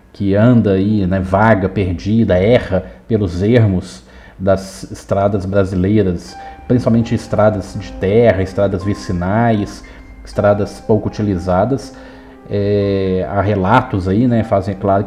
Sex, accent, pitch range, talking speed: male, Brazilian, 95-120 Hz, 110 wpm